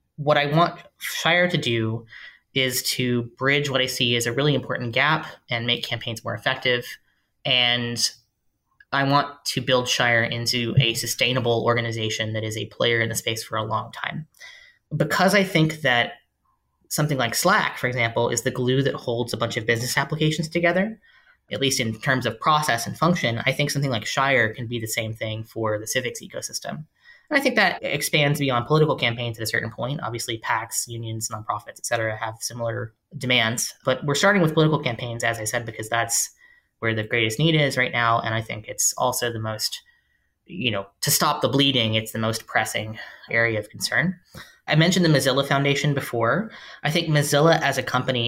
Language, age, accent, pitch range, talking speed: English, 20-39, American, 115-150 Hz, 195 wpm